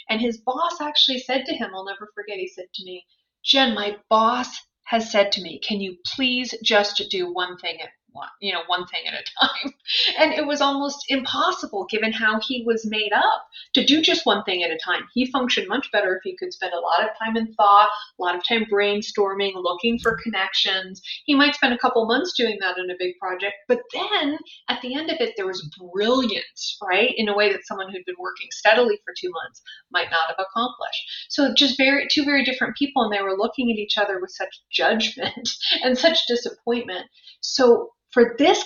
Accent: American